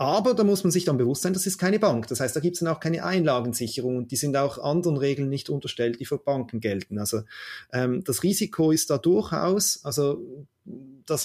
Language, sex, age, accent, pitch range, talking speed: German, male, 30-49, German, 120-160 Hz, 225 wpm